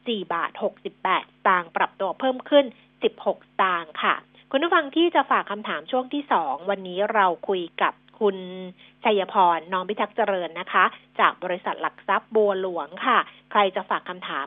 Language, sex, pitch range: Thai, female, 180-230 Hz